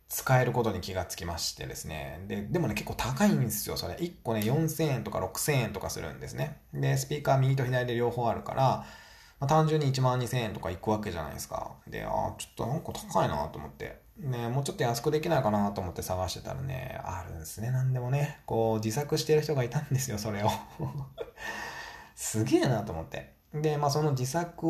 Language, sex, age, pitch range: Japanese, male, 20-39, 105-150 Hz